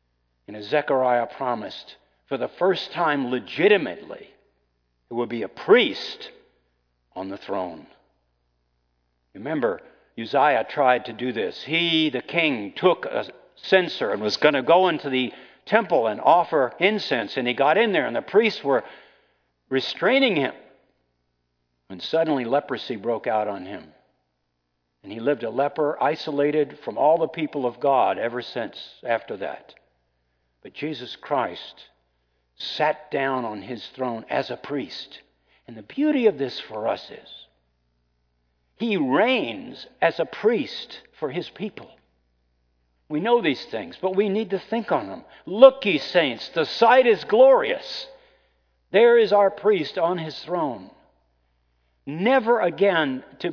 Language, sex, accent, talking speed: English, male, American, 145 wpm